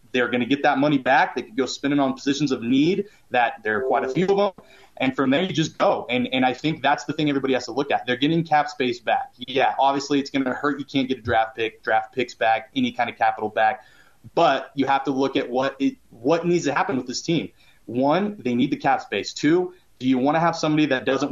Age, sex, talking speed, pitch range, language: 30-49, male, 265 wpm, 130-170 Hz, English